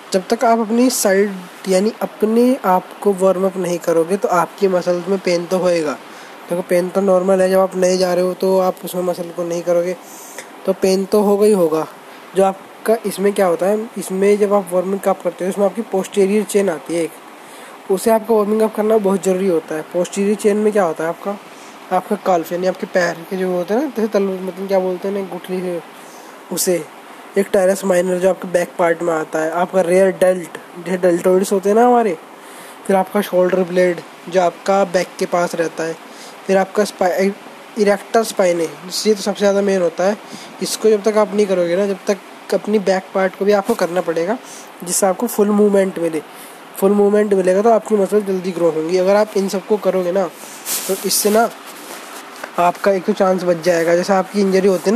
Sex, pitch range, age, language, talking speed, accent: male, 180-205 Hz, 20-39, Hindi, 210 wpm, native